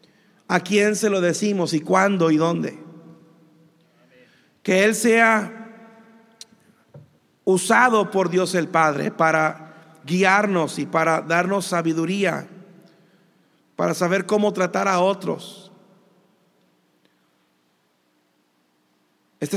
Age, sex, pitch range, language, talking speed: 50-69, male, 160-190 Hz, Spanish, 90 wpm